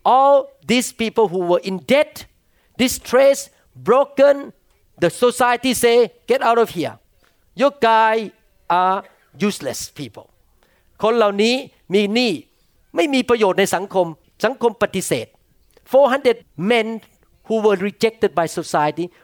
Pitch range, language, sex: 165-235 Hz, Thai, male